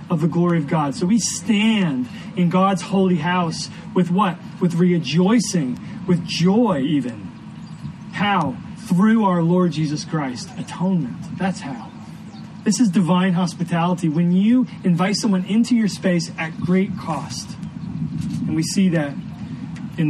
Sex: male